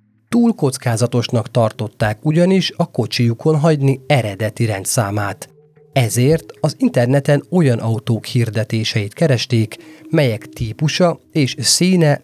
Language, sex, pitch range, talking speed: Hungarian, male, 110-150 Hz, 100 wpm